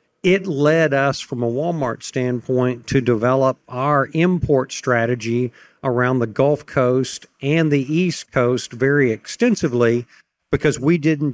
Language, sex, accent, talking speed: English, male, American, 130 wpm